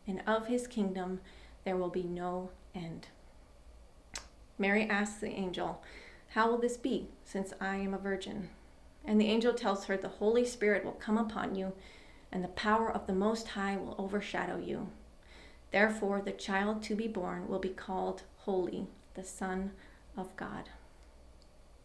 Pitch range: 185-220 Hz